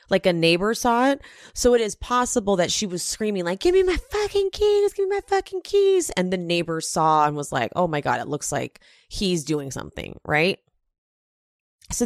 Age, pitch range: 30-49, 150-205 Hz